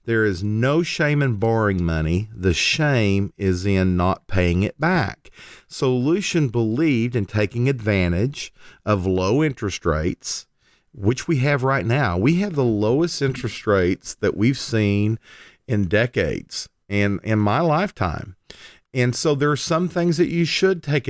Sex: male